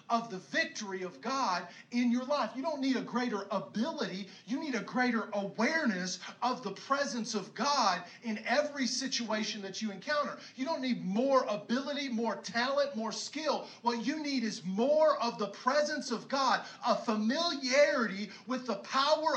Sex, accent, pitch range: male, American, 210-275 Hz